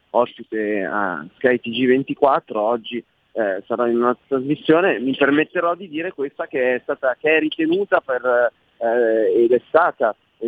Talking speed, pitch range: 155 wpm, 110-145 Hz